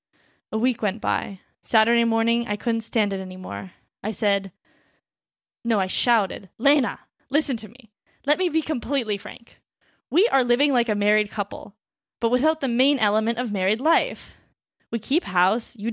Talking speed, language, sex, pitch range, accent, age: 165 wpm, English, female, 220-285 Hz, American, 20-39